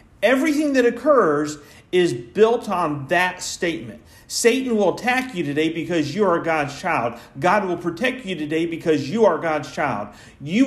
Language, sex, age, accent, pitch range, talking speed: English, male, 40-59, American, 160-240 Hz, 165 wpm